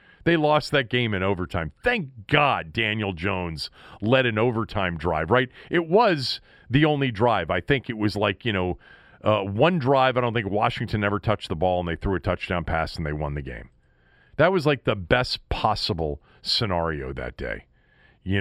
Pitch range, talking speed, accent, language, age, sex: 90-130 Hz, 190 wpm, American, English, 40-59, male